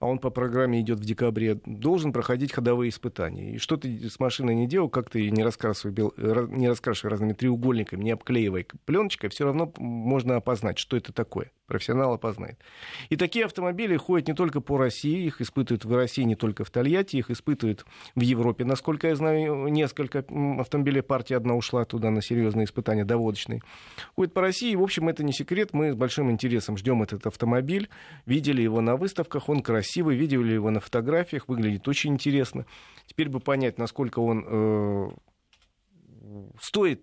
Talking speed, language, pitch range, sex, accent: 170 wpm, Russian, 110-140 Hz, male, native